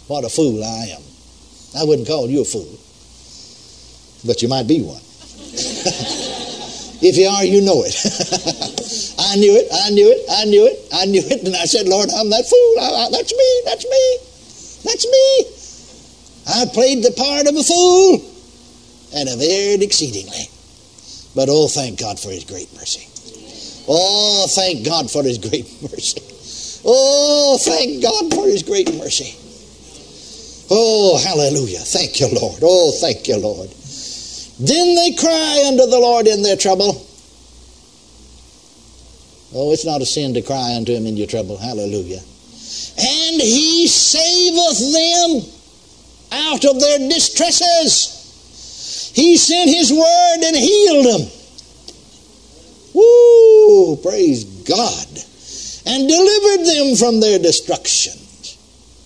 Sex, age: male, 60-79